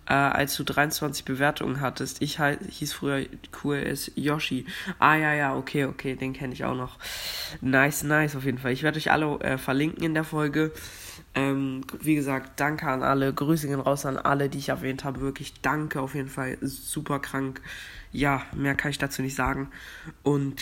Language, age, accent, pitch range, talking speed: English, 20-39, German, 135-150 Hz, 190 wpm